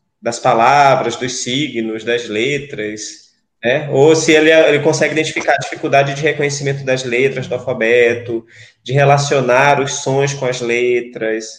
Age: 20-39